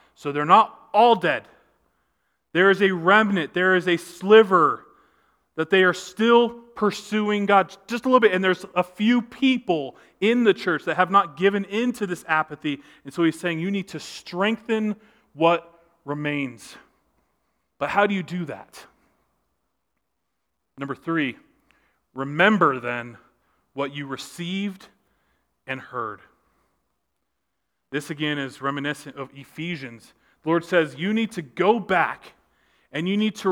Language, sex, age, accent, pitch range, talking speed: English, male, 30-49, American, 150-205 Hz, 145 wpm